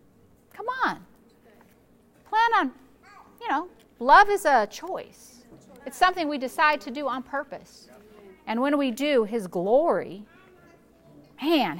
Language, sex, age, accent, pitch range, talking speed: English, female, 40-59, American, 230-290 Hz, 125 wpm